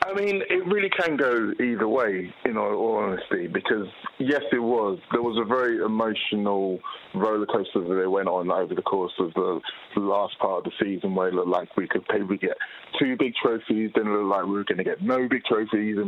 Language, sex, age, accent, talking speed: English, male, 20-39, British, 220 wpm